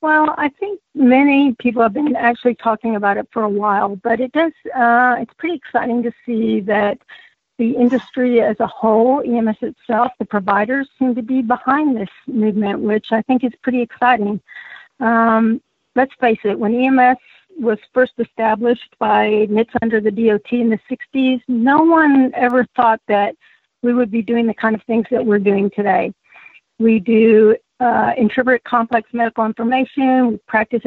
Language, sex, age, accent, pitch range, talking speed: English, female, 50-69, American, 225-255 Hz, 170 wpm